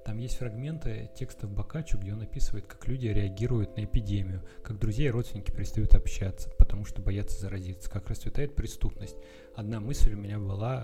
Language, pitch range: Russian, 95-115 Hz